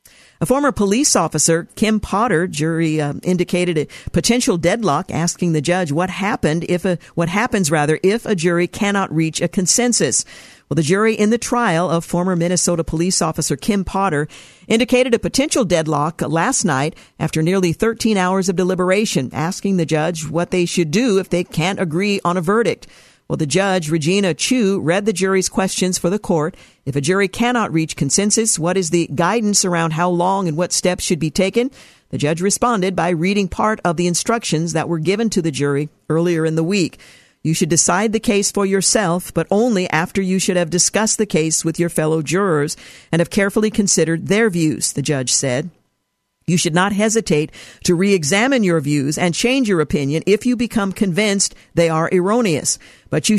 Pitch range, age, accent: 165-200 Hz, 50-69, American